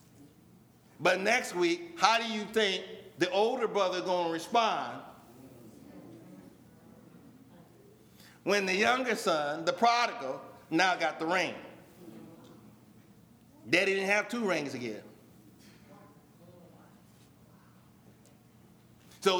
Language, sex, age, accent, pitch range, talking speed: English, male, 50-69, American, 165-225 Hz, 95 wpm